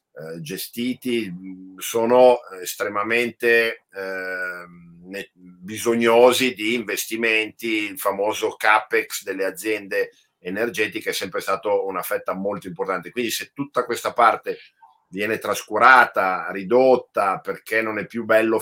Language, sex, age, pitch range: Italian, male, 50-69, 95-125 Hz